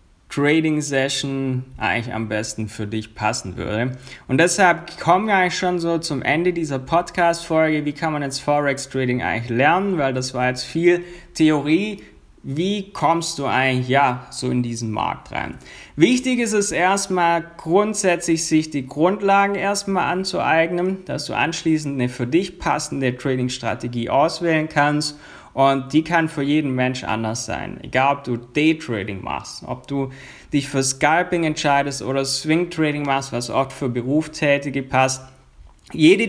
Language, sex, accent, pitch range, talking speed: German, male, German, 125-165 Hz, 150 wpm